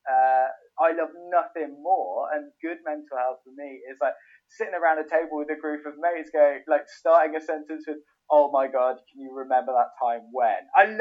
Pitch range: 140-175 Hz